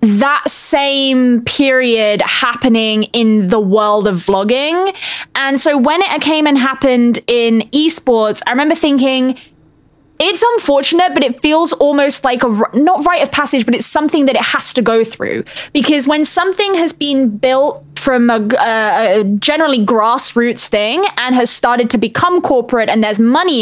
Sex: female